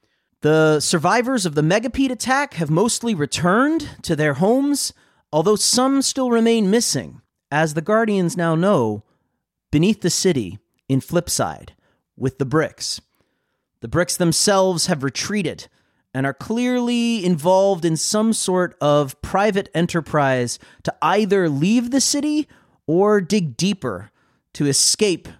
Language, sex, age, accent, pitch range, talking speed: English, male, 30-49, American, 140-220 Hz, 130 wpm